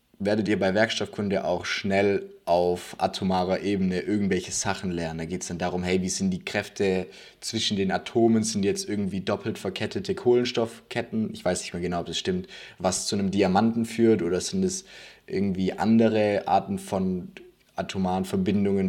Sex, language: male, German